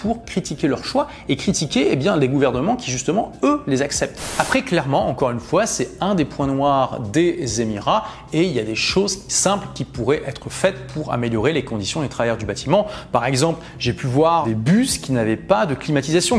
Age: 30-49